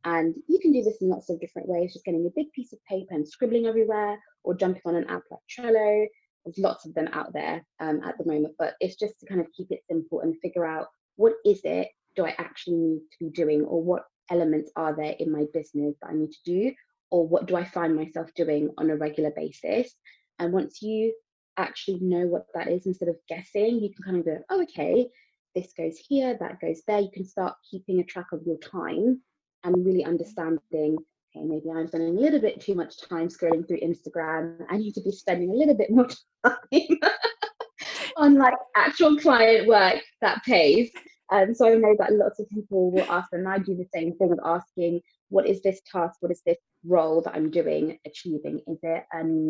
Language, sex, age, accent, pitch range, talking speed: English, female, 20-39, British, 165-215 Hz, 220 wpm